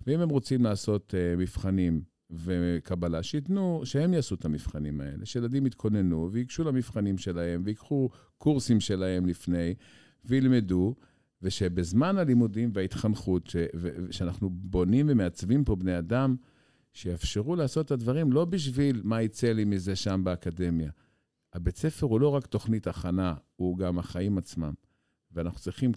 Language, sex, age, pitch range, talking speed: Hebrew, male, 50-69, 85-120 Hz, 135 wpm